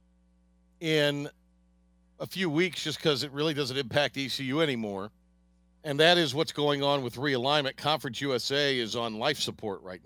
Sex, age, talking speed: male, 50-69, 160 wpm